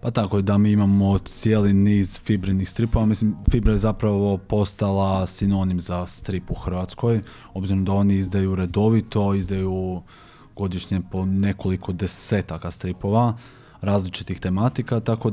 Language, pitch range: Croatian, 90-105 Hz